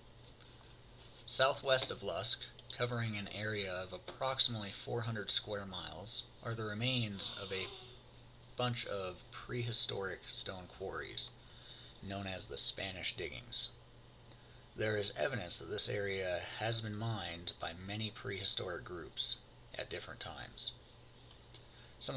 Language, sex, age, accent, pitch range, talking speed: English, male, 30-49, American, 100-120 Hz, 115 wpm